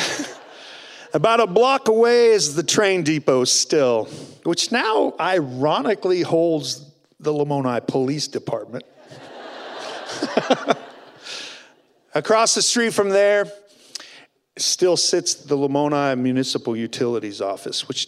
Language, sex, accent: English, male, American